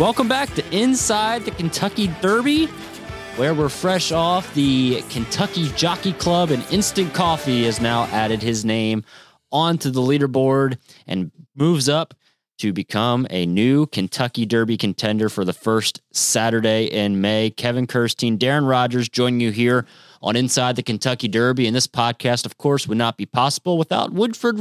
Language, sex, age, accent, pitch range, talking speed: English, male, 30-49, American, 115-155 Hz, 160 wpm